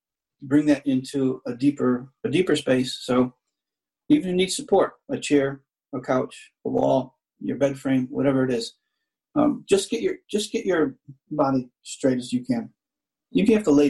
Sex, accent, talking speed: male, American, 180 wpm